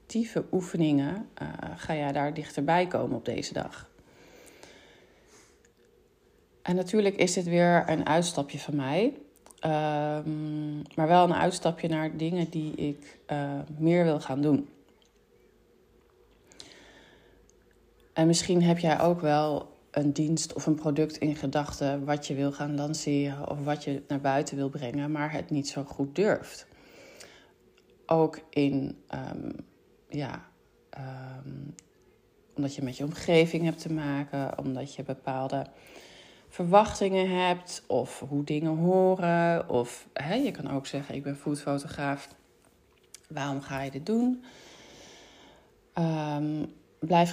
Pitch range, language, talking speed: 145-175 Hz, Dutch, 130 wpm